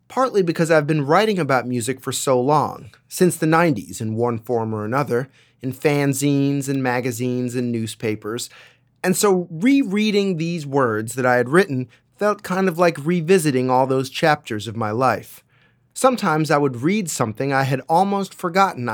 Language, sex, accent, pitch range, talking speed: English, male, American, 130-180 Hz, 170 wpm